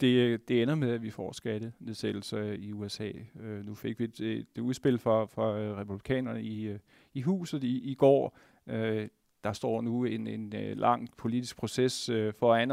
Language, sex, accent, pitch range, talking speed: Danish, male, native, 110-125 Hz, 165 wpm